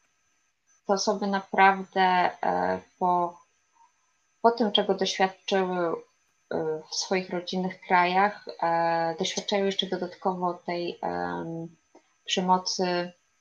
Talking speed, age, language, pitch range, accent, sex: 75 wpm, 20-39, Polish, 180-220 Hz, native, female